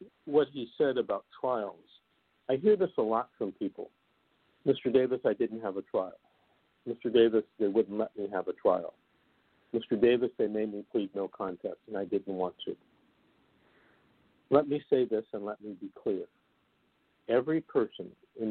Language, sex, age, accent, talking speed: English, male, 60-79, American, 170 wpm